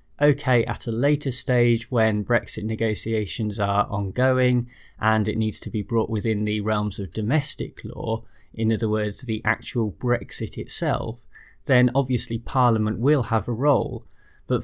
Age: 20-39